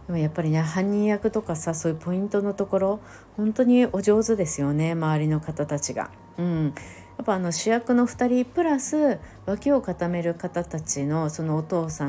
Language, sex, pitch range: Japanese, female, 145-210 Hz